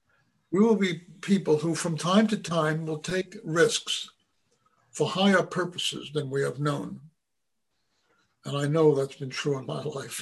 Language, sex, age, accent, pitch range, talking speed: English, male, 60-79, American, 150-205 Hz, 165 wpm